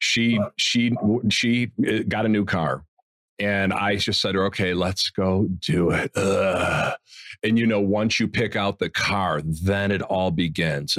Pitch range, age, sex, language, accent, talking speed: 105-150 Hz, 40-59, male, English, American, 175 wpm